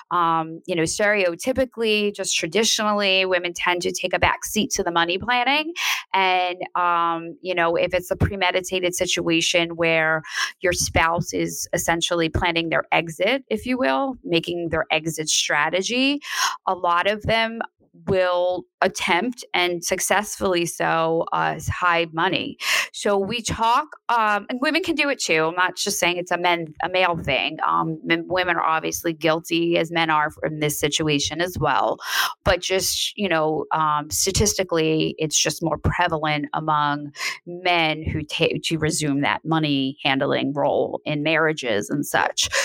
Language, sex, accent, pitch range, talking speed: English, female, American, 160-190 Hz, 155 wpm